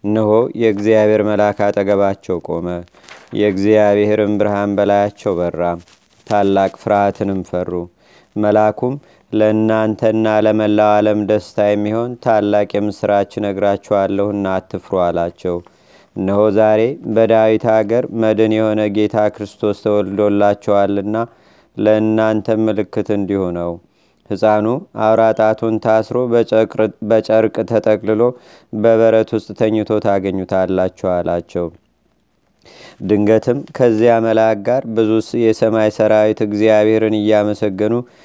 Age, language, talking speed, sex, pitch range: 30-49, Amharic, 85 wpm, male, 100-110 Hz